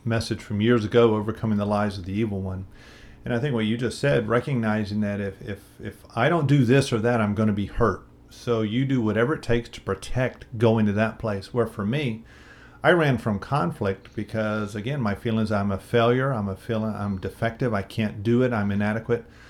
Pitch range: 105-120 Hz